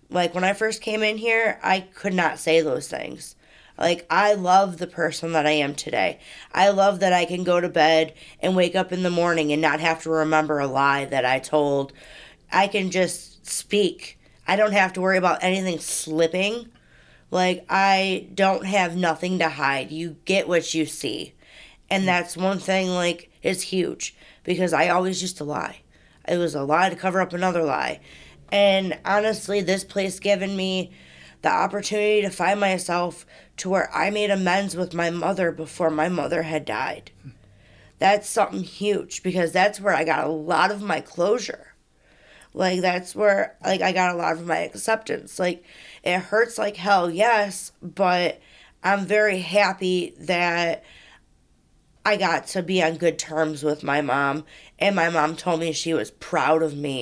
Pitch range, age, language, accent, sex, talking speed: 155-190 Hz, 20-39, English, American, female, 180 wpm